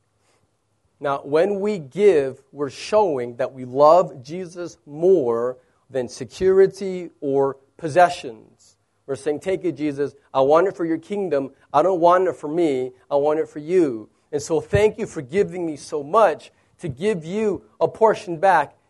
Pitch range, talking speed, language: 135-210 Hz, 165 wpm, English